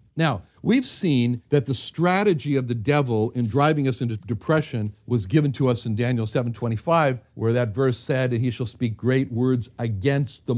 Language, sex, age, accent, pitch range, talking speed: English, male, 60-79, American, 115-155 Hz, 200 wpm